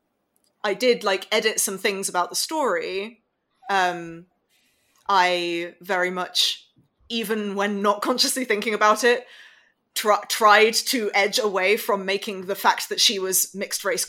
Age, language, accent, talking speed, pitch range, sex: 20-39, English, British, 135 wpm, 180-205 Hz, female